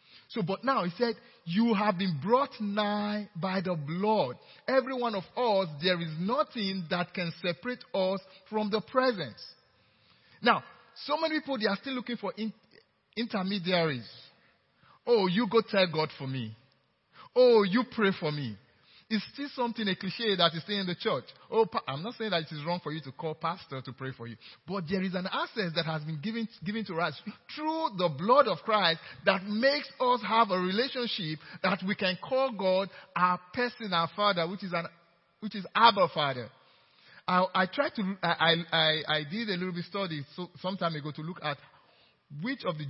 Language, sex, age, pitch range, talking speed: English, male, 50-69, 160-220 Hz, 190 wpm